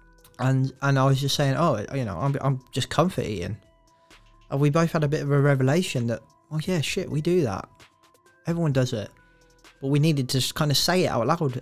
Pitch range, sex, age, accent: 125-145 Hz, male, 20-39, British